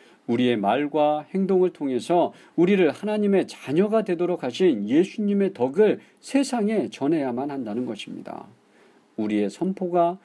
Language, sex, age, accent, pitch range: Korean, male, 50-69, native, 110-175 Hz